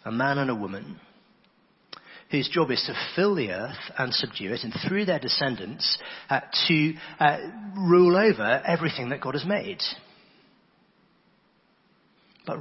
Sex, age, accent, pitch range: male, 40-59, British, 120-185 Hz